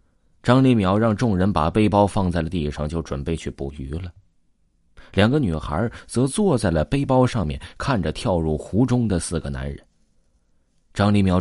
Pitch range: 80-125 Hz